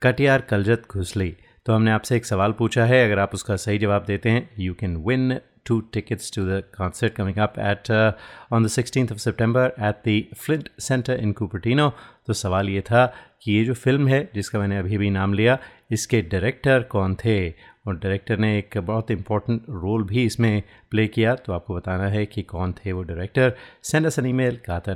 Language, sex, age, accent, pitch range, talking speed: Hindi, male, 30-49, native, 100-120 Hz, 195 wpm